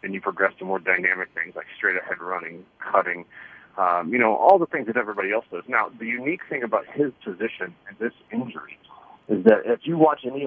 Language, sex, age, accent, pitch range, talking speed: English, male, 40-59, American, 105-130 Hz, 220 wpm